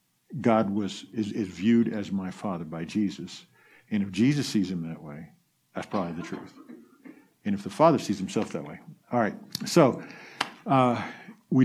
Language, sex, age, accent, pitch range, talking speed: English, male, 50-69, American, 100-145 Hz, 175 wpm